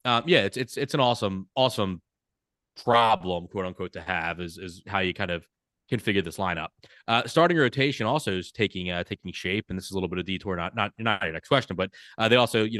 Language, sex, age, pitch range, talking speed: English, male, 20-39, 90-115 Hz, 235 wpm